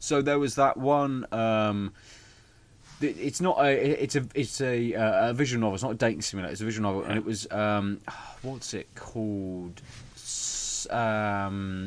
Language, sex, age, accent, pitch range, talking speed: English, male, 20-39, British, 105-130 Hz, 165 wpm